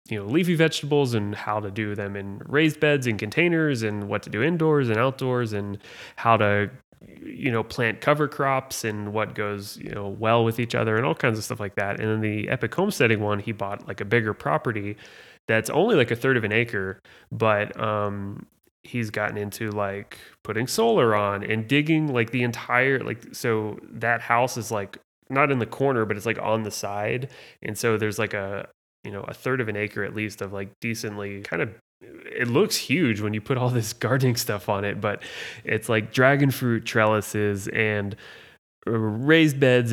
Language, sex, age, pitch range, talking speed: English, male, 20-39, 105-125 Hz, 205 wpm